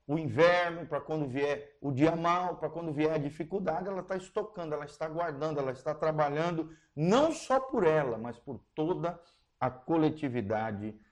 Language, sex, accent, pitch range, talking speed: Portuguese, male, Brazilian, 130-175 Hz, 165 wpm